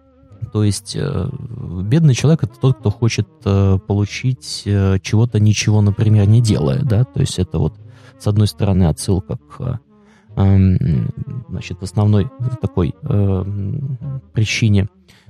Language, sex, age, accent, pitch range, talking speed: Russian, male, 20-39, native, 100-125 Hz, 110 wpm